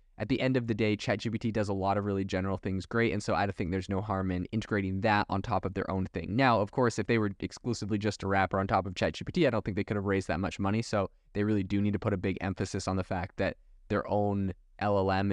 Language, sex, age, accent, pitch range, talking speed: English, male, 20-39, American, 95-115 Hz, 280 wpm